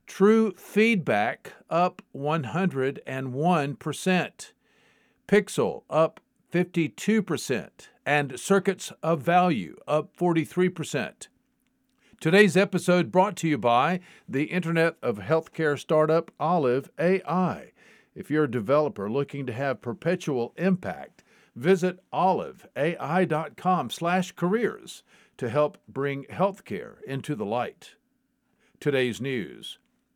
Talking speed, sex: 95 wpm, male